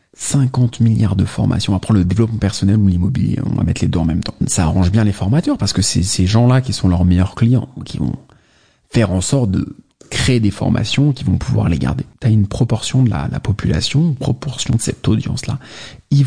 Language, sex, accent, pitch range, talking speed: English, male, French, 100-135 Hz, 230 wpm